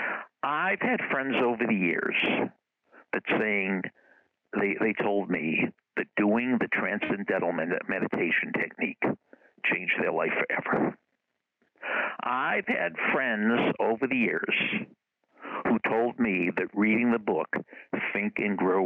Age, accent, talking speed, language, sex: 60-79, American, 120 wpm, English, male